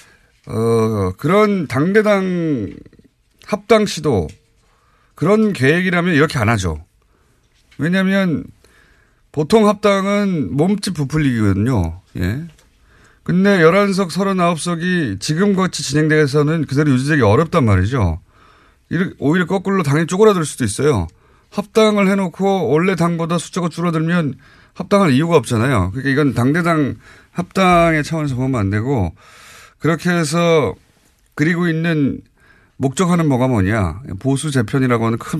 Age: 30-49